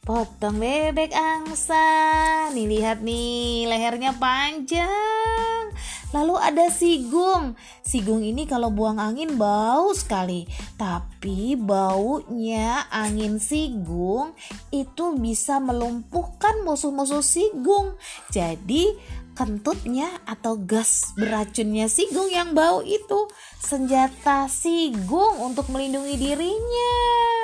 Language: Indonesian